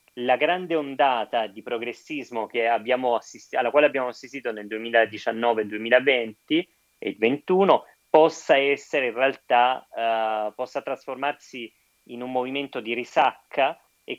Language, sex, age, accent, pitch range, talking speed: Italian, male, 30-49, native, 110-135 Hz, 125 wpm